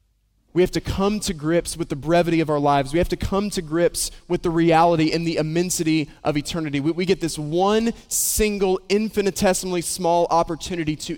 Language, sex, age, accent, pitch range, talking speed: English, male, 20-39, American, 150-195 Hz, 195 wpm